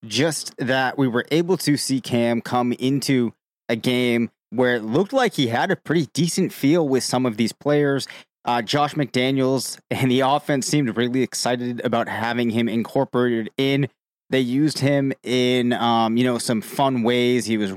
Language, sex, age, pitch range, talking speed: English, male, 20-39, 115-135 Hz, 180 wpm